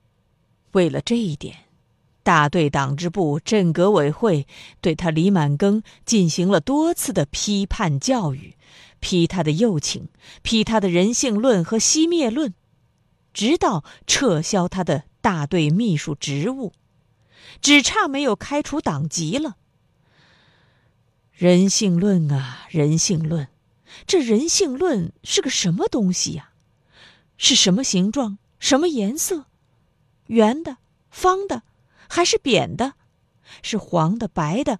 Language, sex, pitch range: Chinese, female, 155-255 Hz